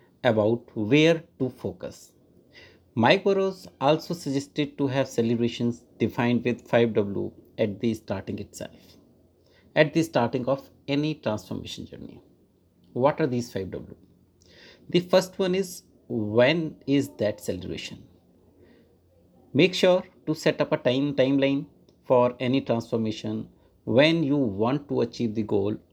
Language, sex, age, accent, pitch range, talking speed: English, male, 60-79, Indian, 110-150 Hz, 130 wpm